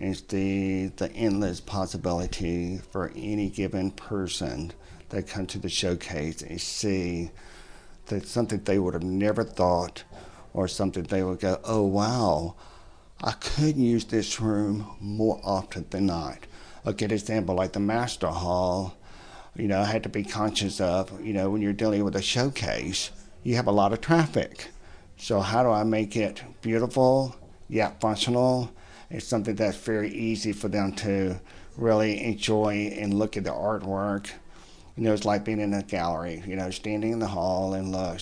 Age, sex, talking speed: 60-79, male, 175 wpm